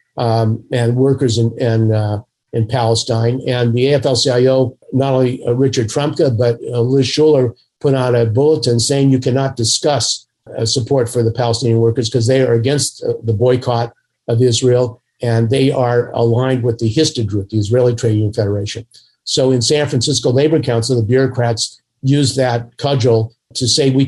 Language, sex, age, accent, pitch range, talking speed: English, male, 50-69, American, 115-135 Hz, 165 wpm